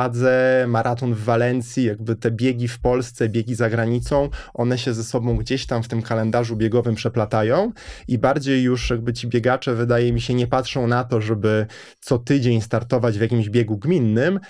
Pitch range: 115-130 Hz